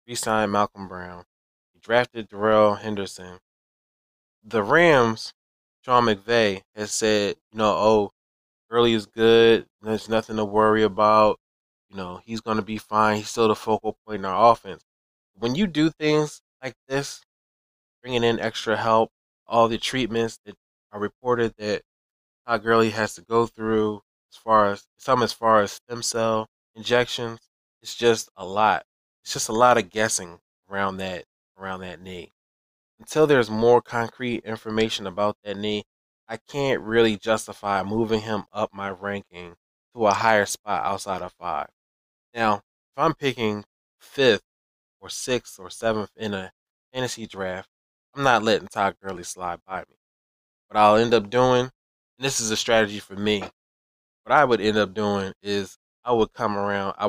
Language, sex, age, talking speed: English, male, 20-39, 165 wpm